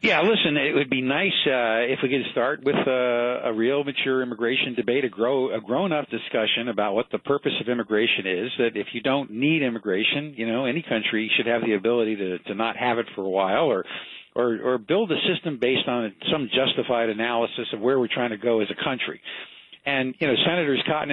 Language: English